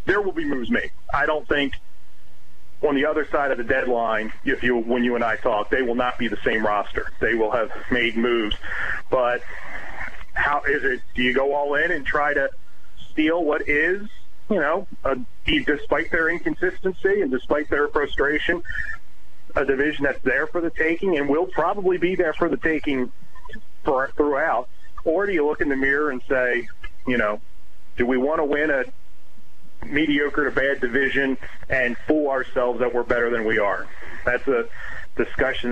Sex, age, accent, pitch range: male, 40-59, American, 115-150 Hz